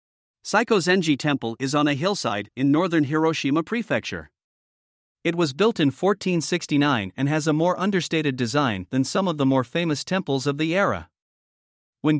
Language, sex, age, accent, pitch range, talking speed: English, male, 50-69, American, 135-180 Hz, 160 wpm